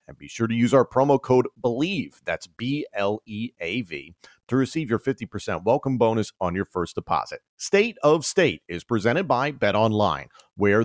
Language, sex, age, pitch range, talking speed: English, male, 40-59, 95-135 Hz, 165 wpm